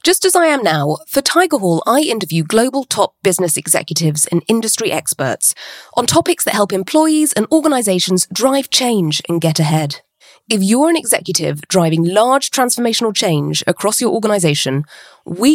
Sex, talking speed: female, 160 wpm